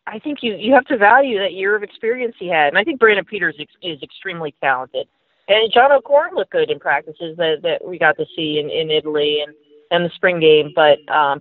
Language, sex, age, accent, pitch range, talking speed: English, female, 40-59, American, 155-220 Hz, 235 wpm